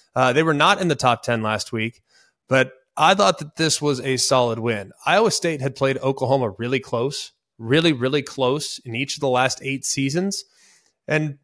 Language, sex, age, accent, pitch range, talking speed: English, male, 30-49, American, 125-160 Hz, 195 wpm